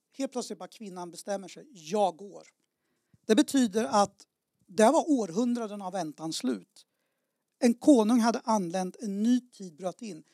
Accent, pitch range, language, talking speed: native, 185-245 Hz, Swedish, 150 wpm